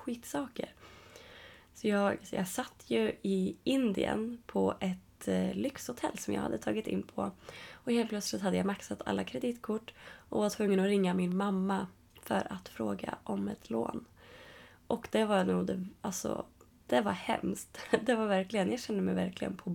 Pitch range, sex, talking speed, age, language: 185-220 Hz, female, 165 wpm, 20-39, Swedish